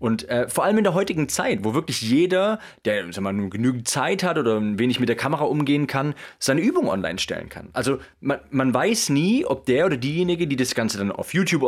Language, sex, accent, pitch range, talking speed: German, male, German, 115-155 Hz, 230 wpm